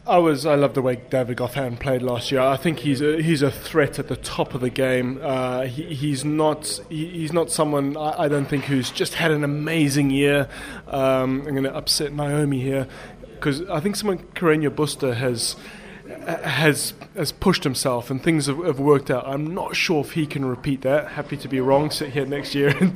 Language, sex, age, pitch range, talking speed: English, male, 20-39, 135-155 Hz, 215 wpm